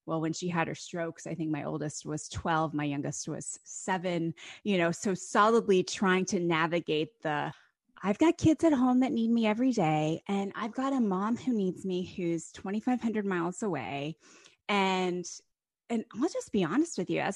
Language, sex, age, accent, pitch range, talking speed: English, female, 20-39, American, 175-245 Hz, 190 wpm